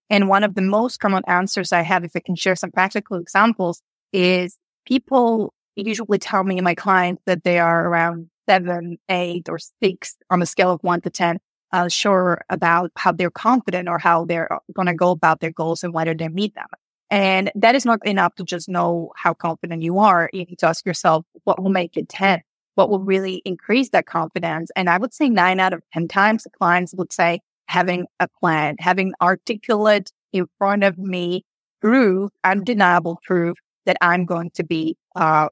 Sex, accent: female, American